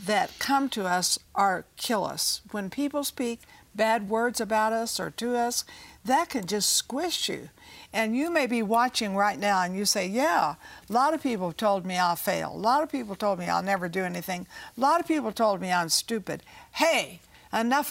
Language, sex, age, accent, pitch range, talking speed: English, female, 60-79, American, 200-265 Hz, 205 wpm